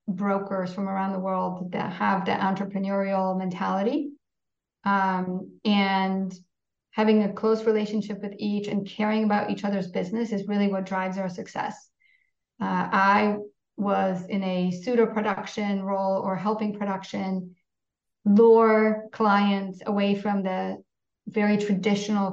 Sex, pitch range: female, 195-215 Hz